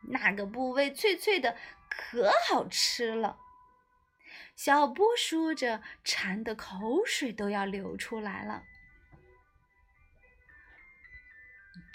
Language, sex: Chinese, female